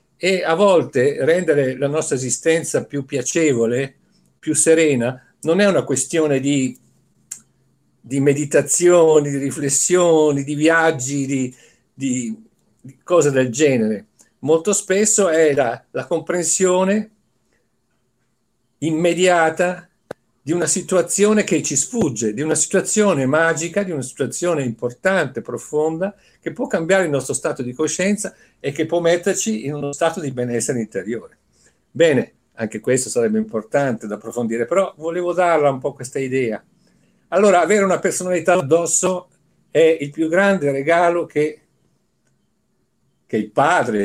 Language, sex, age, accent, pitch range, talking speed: Italian, male, 50-69, native, 135-180 Hz, 130 wpm